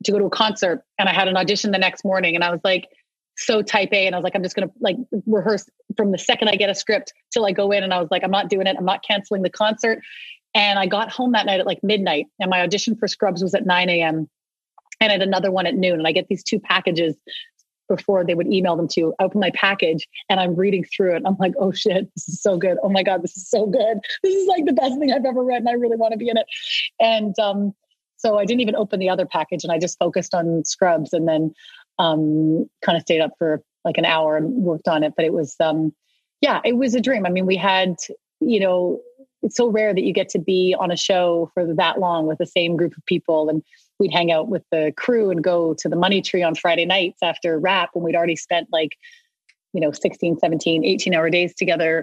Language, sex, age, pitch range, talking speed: English, female, 30-49, 170-210 Hz, 265 wpm